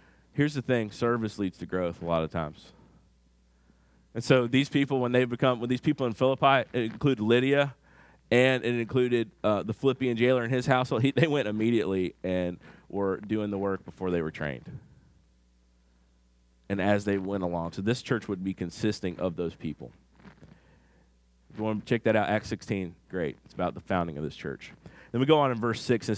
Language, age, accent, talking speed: English, 30-49, American, 200 wpm